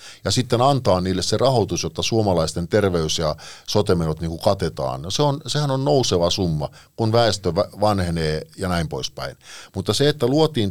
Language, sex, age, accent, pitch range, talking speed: Finnish, male, 50-69, native, 85-115 Hz, 165 wpm